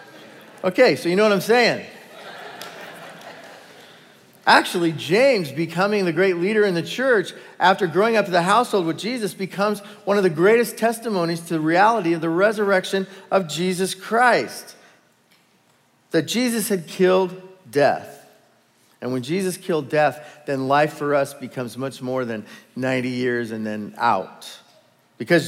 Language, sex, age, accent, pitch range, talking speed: English, male, 40-59, American, 140-195 Hz, 150 wpm